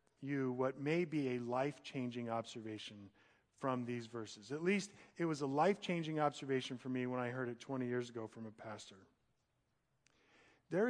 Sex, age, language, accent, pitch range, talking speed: male, 50-69, English, American, 130-185 Hz, 165 wpm